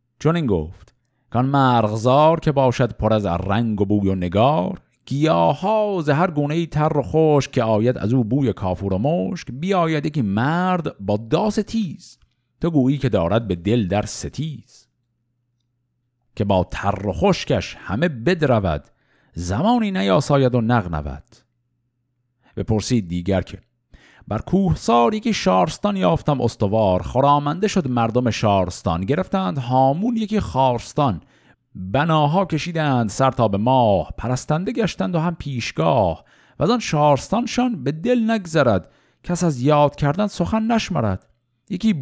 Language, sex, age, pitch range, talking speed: Persian, male, 50-69, 110-165 Hz, 135 wpm